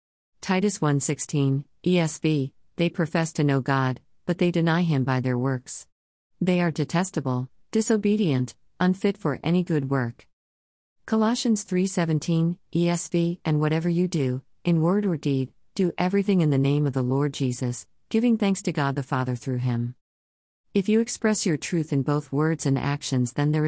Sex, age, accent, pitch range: female, 50-69, American, 130-165 Hz